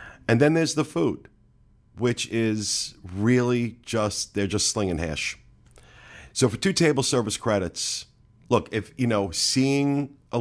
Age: 40-59